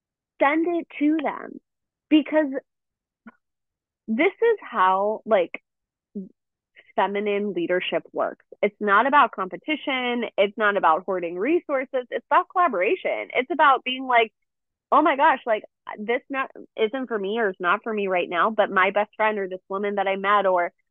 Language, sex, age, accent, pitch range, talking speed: English, female, 20-39, American, 195-270 Hz, 160 wpm